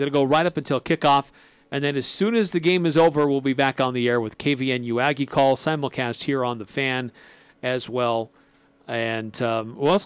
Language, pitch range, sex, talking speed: English, 130-165 Hz, male, 220 wpm